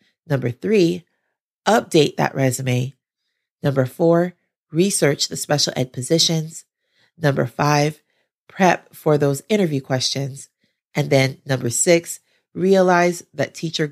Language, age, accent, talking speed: English, 30-49, American, 110 wpm